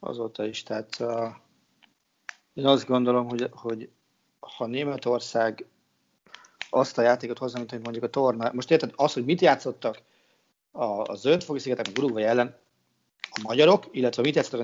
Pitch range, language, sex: 115-150 Hz, Hungarian, male